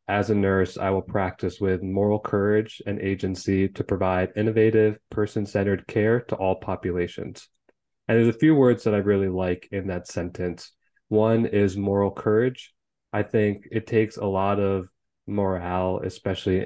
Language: English